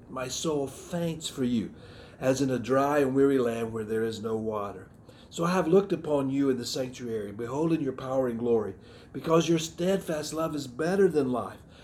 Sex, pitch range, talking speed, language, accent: male, 120-160 Hz, 200 wpm, English, American